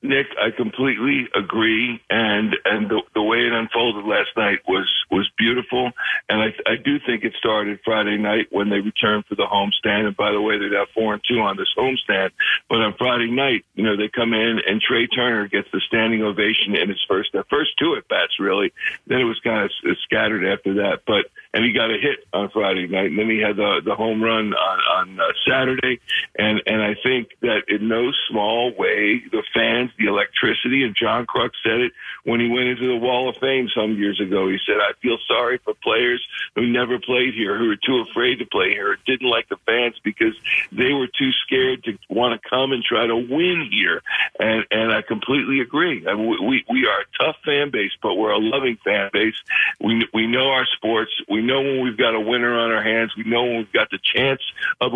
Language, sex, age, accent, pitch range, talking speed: English, male, 50-69, American, 110-130 Hz, 225 wpm